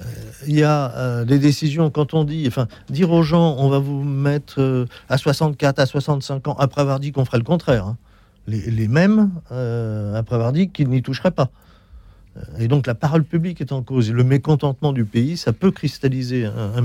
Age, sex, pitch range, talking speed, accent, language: 50-69, male, 110-140 Hz, 210 wpm, French, French